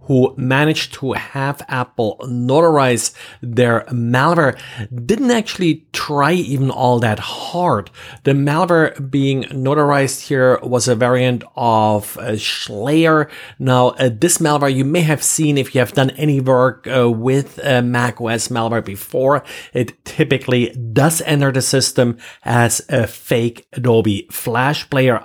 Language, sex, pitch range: English, male, 115-140 Hz